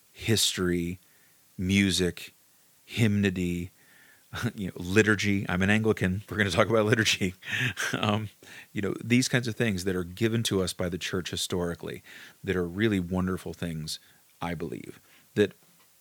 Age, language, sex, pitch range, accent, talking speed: 40-59, English, male, 95-120 Hz, American, 145 wpm